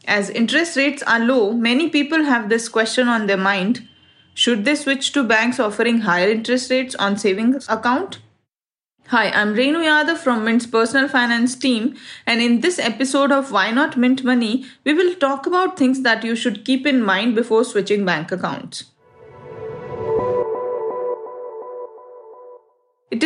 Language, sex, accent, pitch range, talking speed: English, female, Indian, 220-265 Hz, 150 wpm